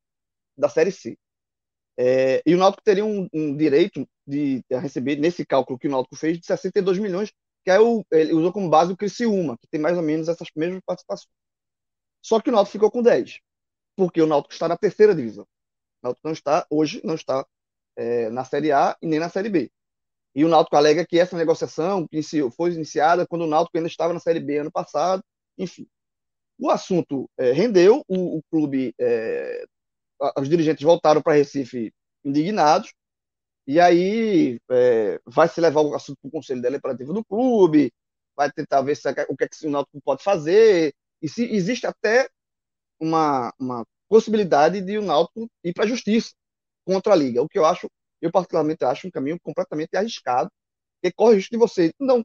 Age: 20-39